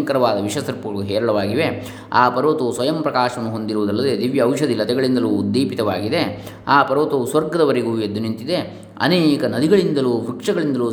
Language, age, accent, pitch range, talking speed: Kannada, 20-39, native, 105-140 Hz, 105 wpm